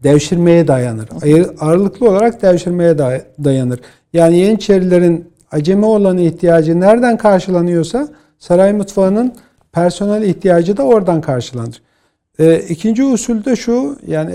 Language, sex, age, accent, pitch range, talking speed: Turkish, male, 50-69, native, 150-195 Hz, 115 wpm